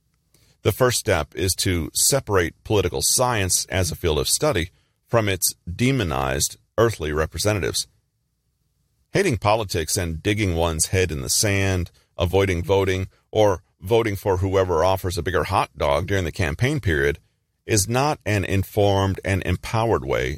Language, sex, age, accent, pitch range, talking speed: English, male, 40-59, American, 80-100 Hz, 145 wpm